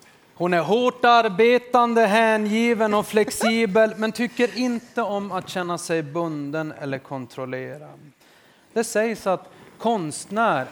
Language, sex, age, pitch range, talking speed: Swedish, male, 30-49, 155-225 Hz, 120 wpm